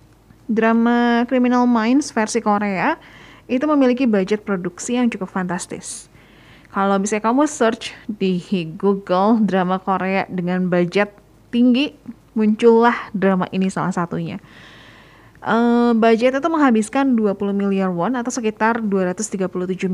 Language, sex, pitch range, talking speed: Indonesian, female, 185-240 Hz, 115 wpm